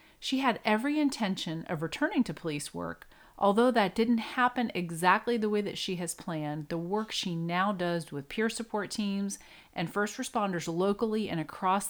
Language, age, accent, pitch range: English, 30-49, American, 165-220 Hz